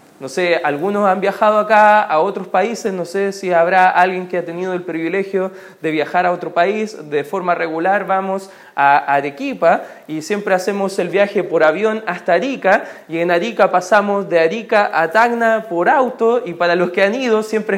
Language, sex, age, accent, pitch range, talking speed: Spanish, male, 20-39, Argentinian, 175-230 Hz, 190 wpm